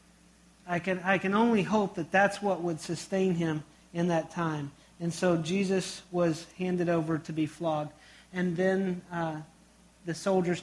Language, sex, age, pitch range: English, male, 40-59, 160-195 Hz